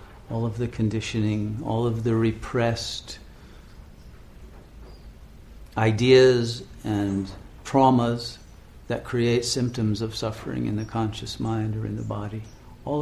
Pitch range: 85-120 Hz